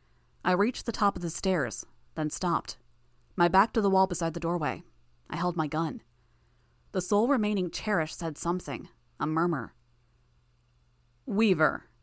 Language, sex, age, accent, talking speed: English, female, 20-39, American, 150 wpm